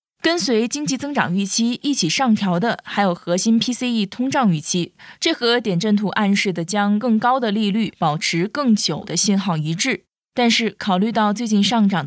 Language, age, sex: Chinese, 20-39, female